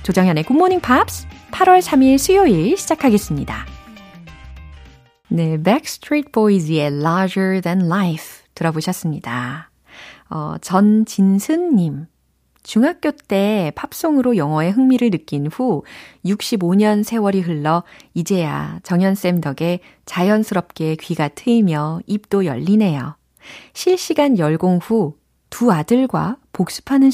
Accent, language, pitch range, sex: native, Korean, 165-230 Hz, female